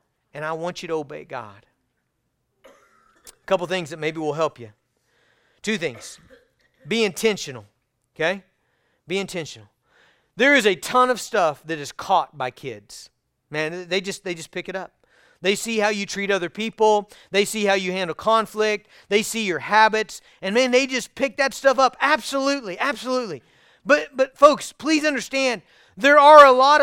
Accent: American